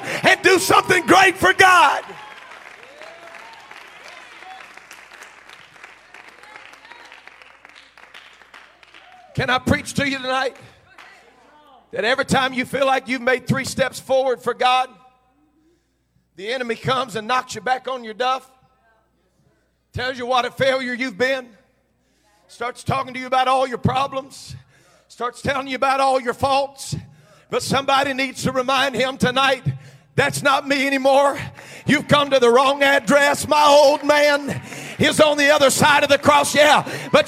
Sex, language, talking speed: male, English, 140 wpm